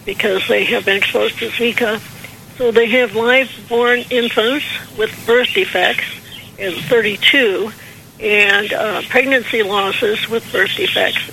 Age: 60-79